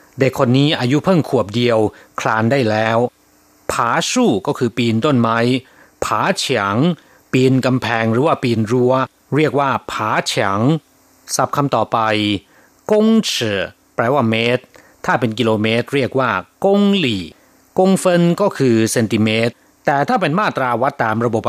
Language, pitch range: Thai, 110-160 Hz